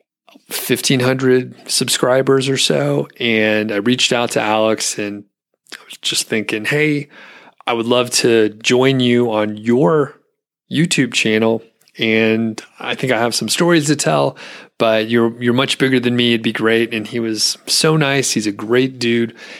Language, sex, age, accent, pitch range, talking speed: English, male, 30-49, American, 110-125 Hz, 165 wpm